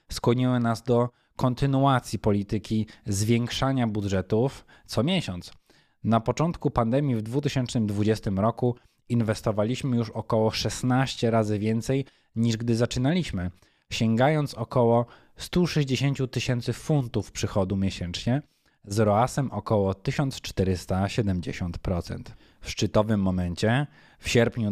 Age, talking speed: 20-39, 95 wpm